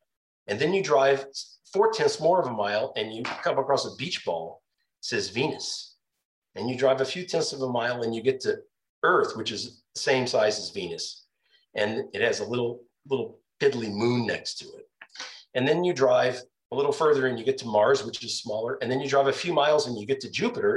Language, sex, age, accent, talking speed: English, male, 40-59, American, 225 wpm